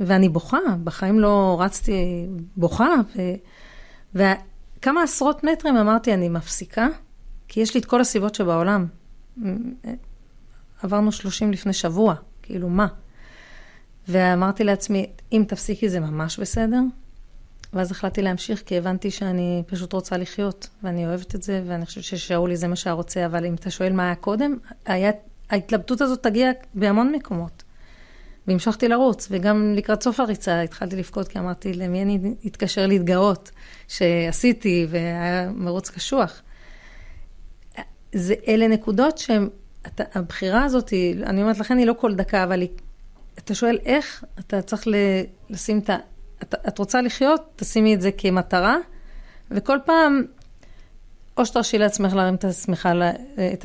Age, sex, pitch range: 30-49, female, 180-220 Hz